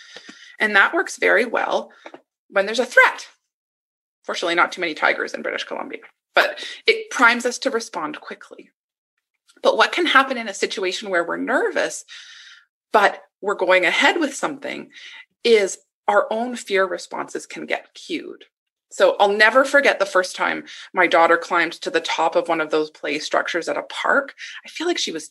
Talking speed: 180 wpm